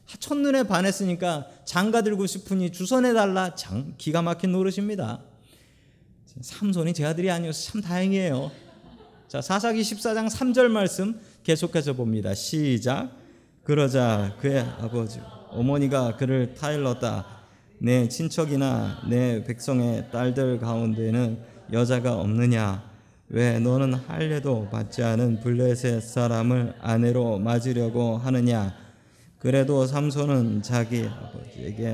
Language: Korean